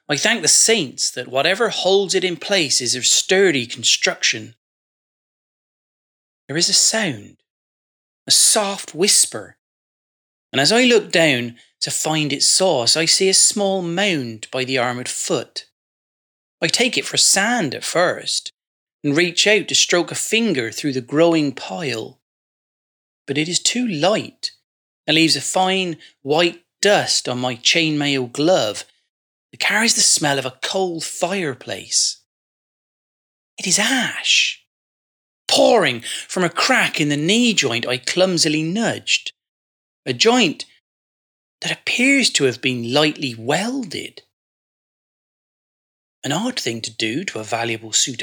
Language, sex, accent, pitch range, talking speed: English, male, British, 135-200 Hz, 140 wpm